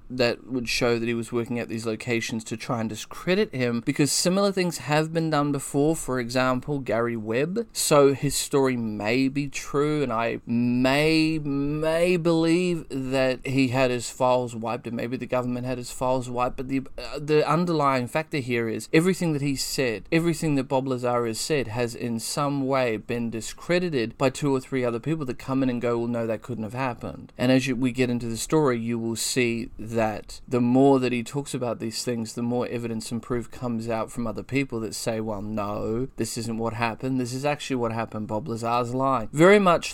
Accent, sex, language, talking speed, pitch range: Australian, male, English, 210 wpm, 115-140 Hz